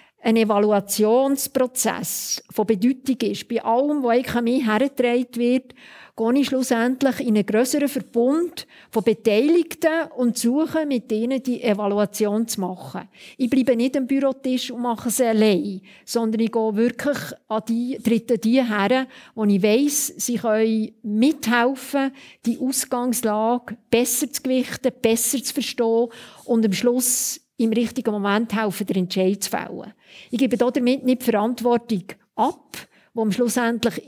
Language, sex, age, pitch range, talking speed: German, female, 50-69, 220-260 Hz, 135 wpm